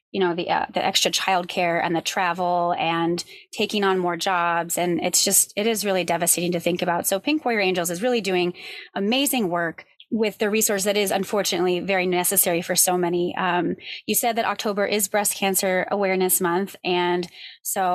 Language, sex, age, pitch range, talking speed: English, female, 20-39, 180-205 Hz, 190 wpm